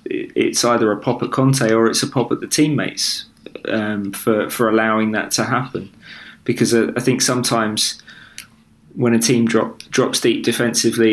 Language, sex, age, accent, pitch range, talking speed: English, male, 20-39, British, 105-125 Hz, 165 wpm